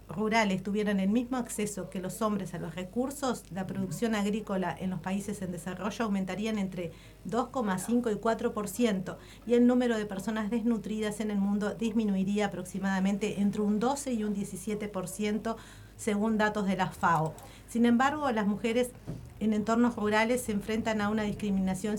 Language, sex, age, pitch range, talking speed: Spanish, female, 50-69, 190-225 Hz, 160 wpm